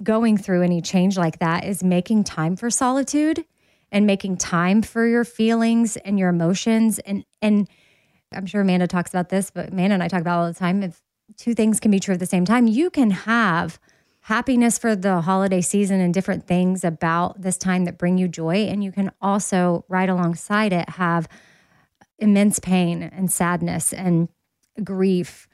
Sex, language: female, English